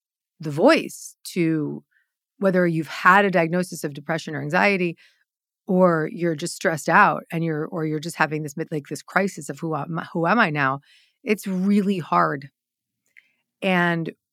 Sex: female